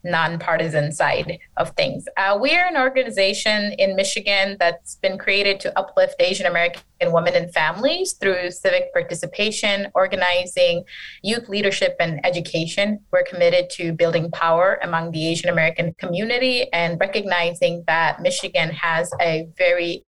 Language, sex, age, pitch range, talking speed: English, female, 20-39, 170-200 Hz, 135 wpm